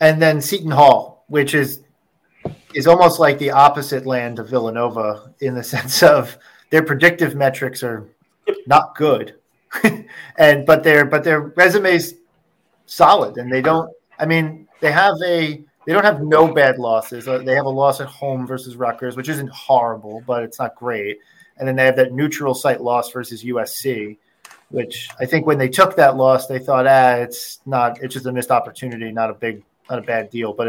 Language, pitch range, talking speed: English, 125-155 Hz, 195 wpm